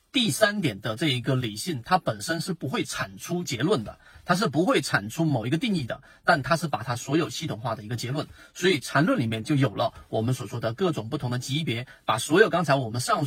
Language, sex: Chinese, male